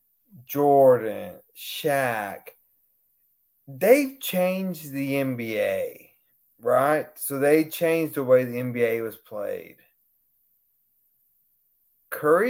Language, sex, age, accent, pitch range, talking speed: English, male, 30-49, American, 130-170 Hz, 80 wpm